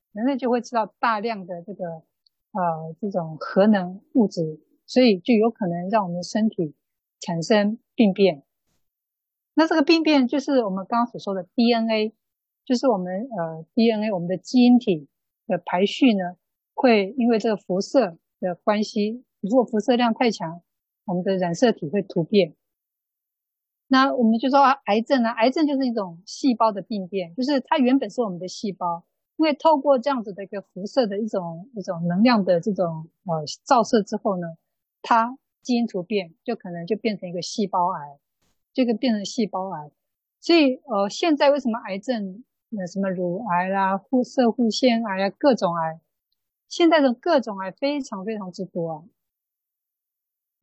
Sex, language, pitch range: female, Chinese, 180-245 Hz